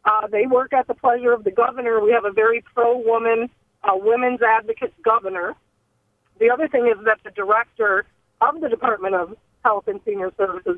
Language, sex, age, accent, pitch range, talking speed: English, female, 50-69, American, 215-275 Hz, 185 wpm